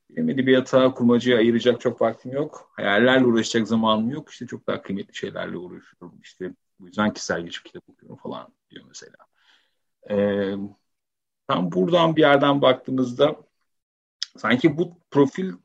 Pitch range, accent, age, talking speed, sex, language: 100-135 Hz, native, 40-59, 135 wpm, male, Turkish